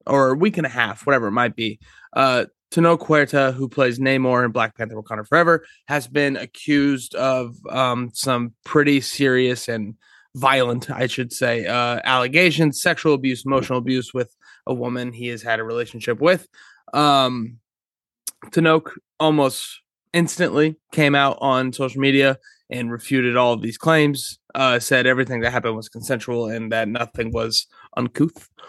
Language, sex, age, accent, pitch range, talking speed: English, male, 20-39, American, 120-145 Hz, 160 wpm